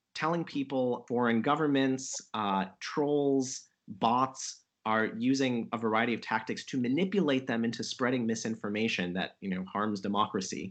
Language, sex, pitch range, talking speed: English, male, 110-140 Hz, 135 wpm